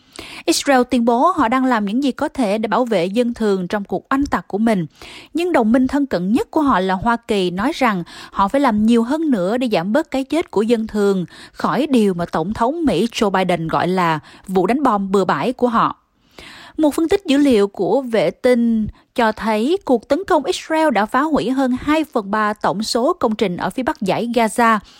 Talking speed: 230 wpm